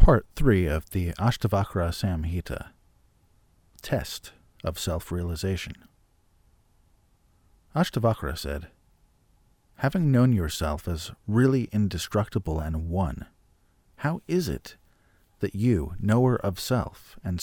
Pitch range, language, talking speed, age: 85-110 Hz, English, 95 wpm, 40-59